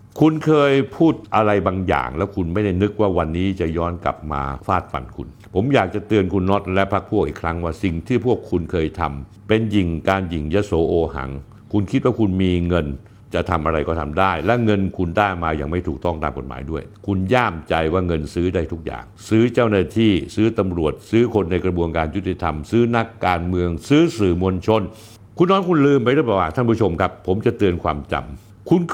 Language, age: Thai, 60-79